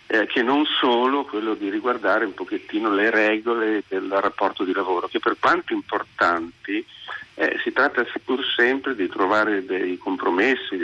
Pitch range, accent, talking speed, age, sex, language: 295-365 Hz, native, 150 wpm, 50-69, male, Italian